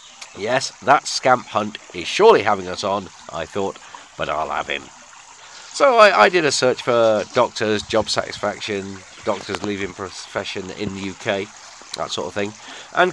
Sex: male